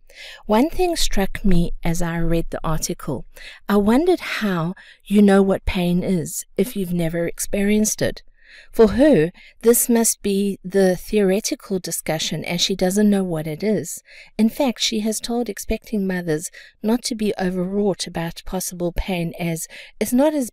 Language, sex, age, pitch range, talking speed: English, female, 50-69, 170-210 Hz, 160 wpm